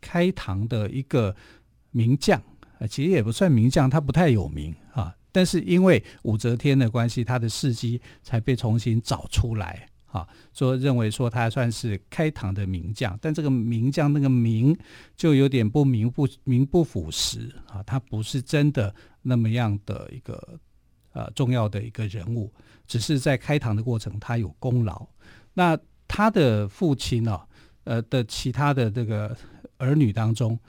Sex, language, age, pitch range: male, Chinese, 50-69, 110-140 Hz